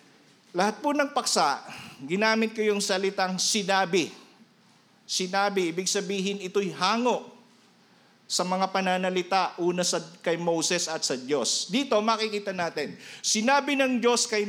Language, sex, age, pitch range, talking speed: Filipino, male, 50-69, 180-220 Hz, 125 wpm